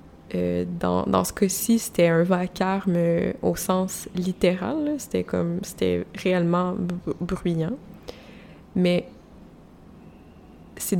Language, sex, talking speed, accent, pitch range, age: French, female, 100 wpm, Canadian, 175-200 Hz, 20-39